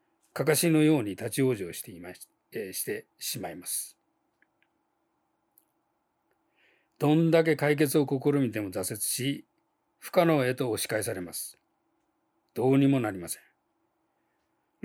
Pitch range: 120-160 Hz